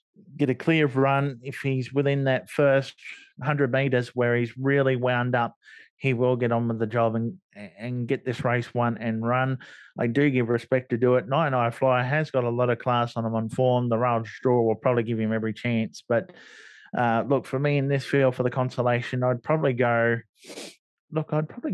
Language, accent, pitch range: English, Australian, 120-135 Hz